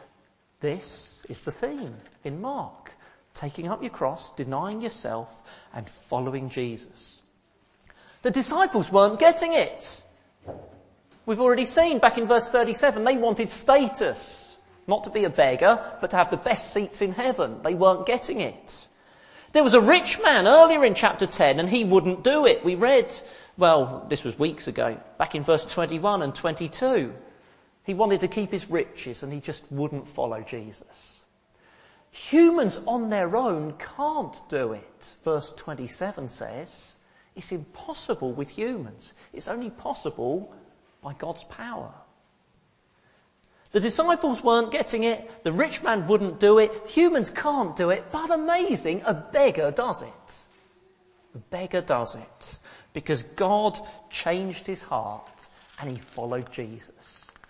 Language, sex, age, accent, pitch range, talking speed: English, male, 40-59, British, 160-245 Hz, 145 wpm